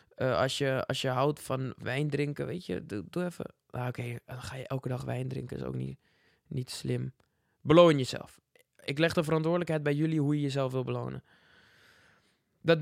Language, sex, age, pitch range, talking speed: English, male, 20-39, 135-165 Hz, 200 wpm